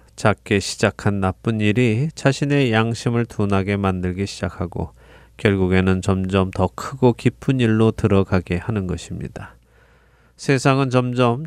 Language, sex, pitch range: Korean, male, 95-120 Hz